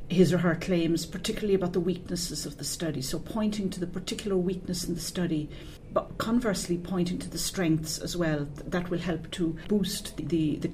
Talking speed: 195 wpm